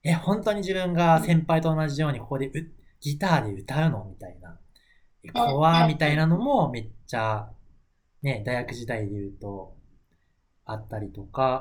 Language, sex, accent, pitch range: Japanese, male, native, 105-160 Hz